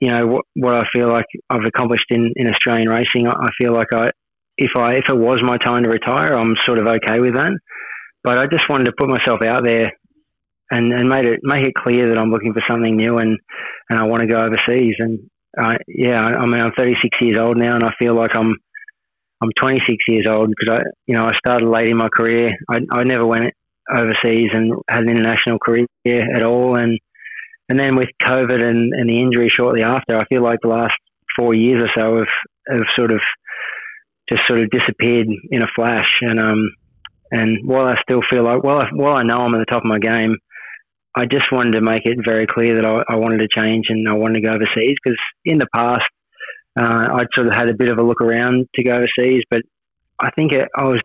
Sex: male